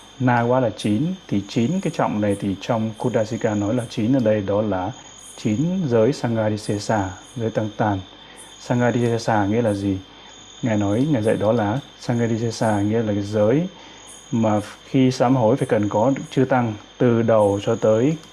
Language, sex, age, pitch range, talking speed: Vietnamese, male, 20-39, 105-125 Hz, 170 wpm